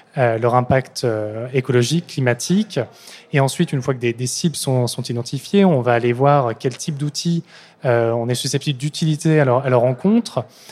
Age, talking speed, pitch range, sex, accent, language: 20-39, 190 wpm, 120-145 Hz, male, French, French